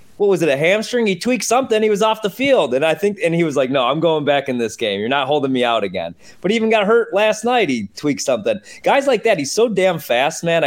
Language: English